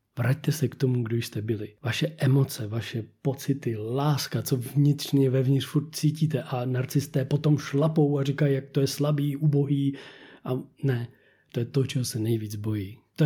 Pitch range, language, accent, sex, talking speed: 120-145 Hz, Czech, native, male, 170 wpm